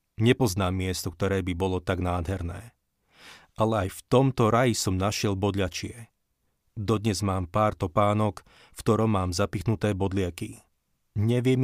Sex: male